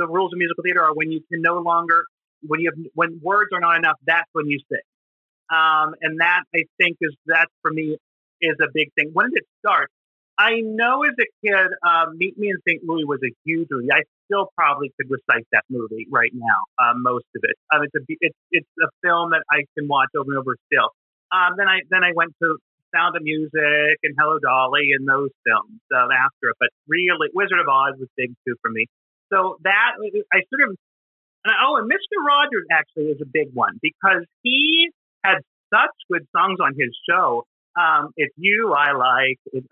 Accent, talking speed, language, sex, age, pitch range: American, 210 wpm, English, male, 30-49, 150-200 Hz